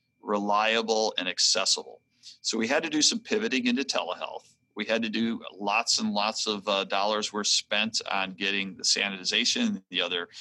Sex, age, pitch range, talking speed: male, 40-59, 100-145 Hz, 175 wpm